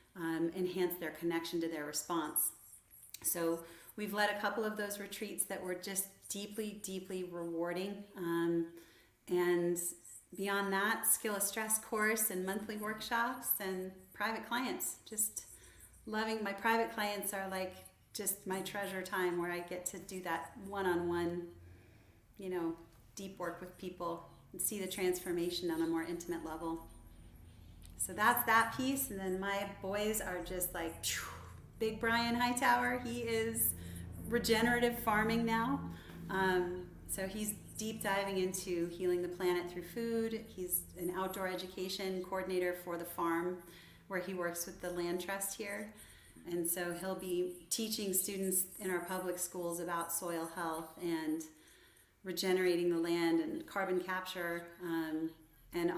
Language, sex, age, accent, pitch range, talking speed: English, female, 40-59, American, 170-205 Hz, 145 wpm